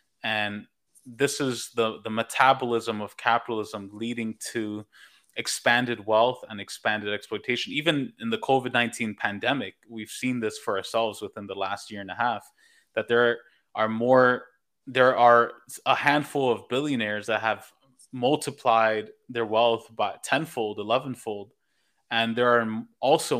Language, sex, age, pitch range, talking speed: English, male, 20-39, 110-120 Hz, 140 wpm